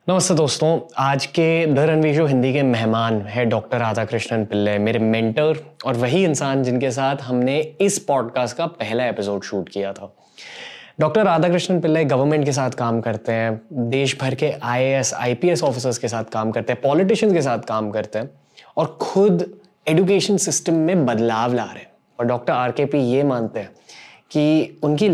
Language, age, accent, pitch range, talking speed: Hindi, 20-39, native, 120-160 Hz, 175 wpm